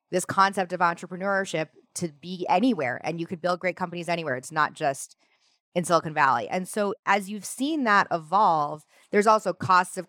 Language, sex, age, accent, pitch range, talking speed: English, female, 20-39, American, 160-195 Hz, 185 wpm